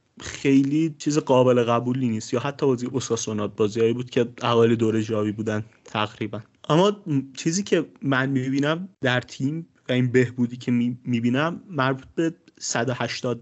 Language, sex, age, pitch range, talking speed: Persian, male, 30-49, 115-140 Hz, 150 wpm